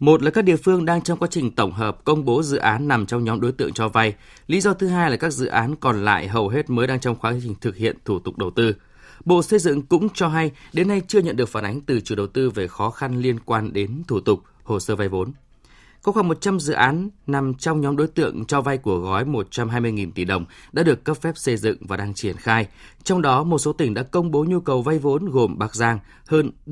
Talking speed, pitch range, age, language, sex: 265 wpm, 110-155 Hz, 20-39, Vietnamese, male